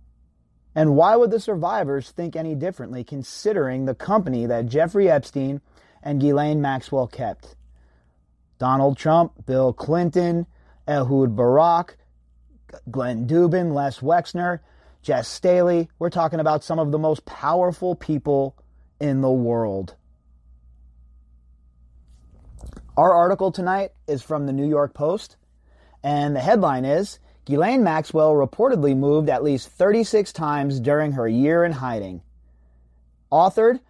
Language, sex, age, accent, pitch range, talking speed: English, male, 30-49, American, 105-170 Hz, 120 wpm